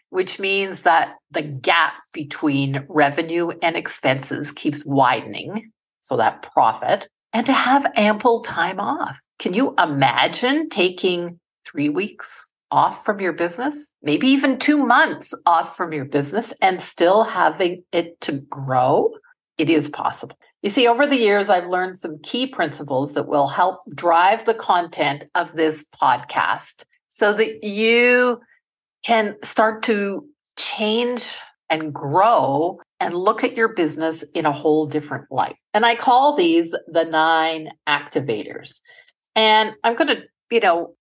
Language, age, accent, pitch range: English, 50-69, American, 155-235 Hz